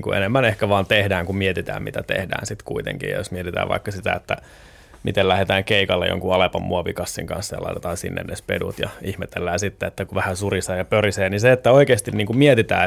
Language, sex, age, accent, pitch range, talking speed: Finnish, male, 20-39, native, 95-115 Hz, 190 wpm